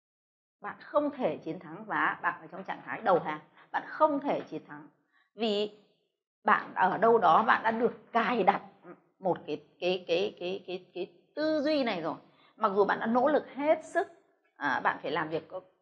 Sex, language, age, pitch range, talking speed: female, Vietnamese, 20-39, 195-290 Hz, 195 wpm